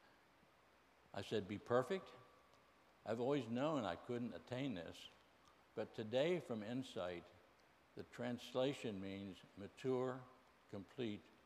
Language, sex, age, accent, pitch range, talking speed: English, male, 60-79, American, 100-125 Hz, 105 wpm